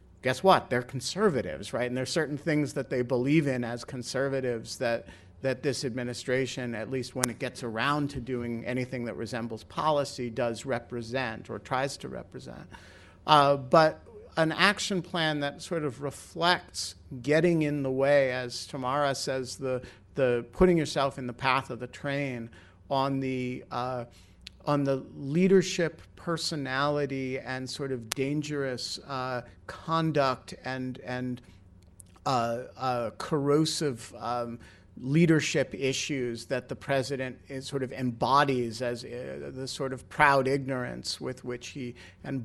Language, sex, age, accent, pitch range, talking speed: English, male, 50-69, American, 120-145 Hz, 145 wpm